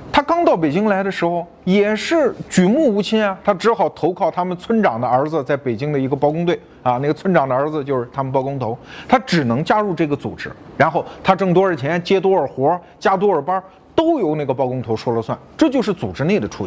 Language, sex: Chinese, male